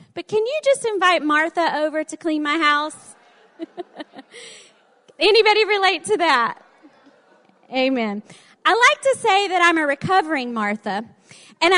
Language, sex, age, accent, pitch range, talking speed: English, female, 40-59, American, 230-330 Hz, 130 wpm